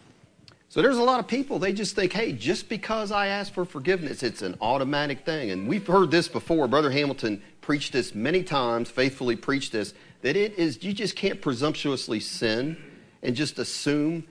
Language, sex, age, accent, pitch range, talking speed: English, male, 40-59, American, 140-200 Hz, 190 wpm